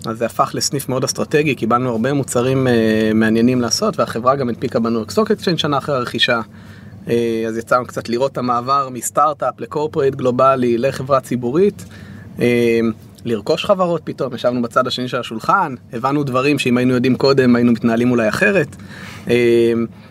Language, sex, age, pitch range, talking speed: Hebrew, male, 30-49, 115-140 Hz, 160 wpm